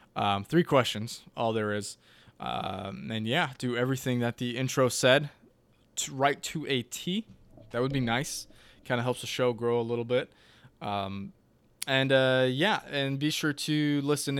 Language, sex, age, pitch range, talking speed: English, male, 20-39, 110-135 Hz, 175 wpm